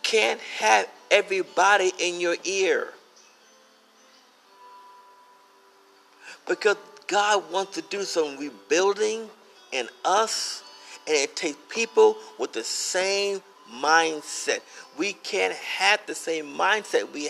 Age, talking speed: 50-69, 105 wpm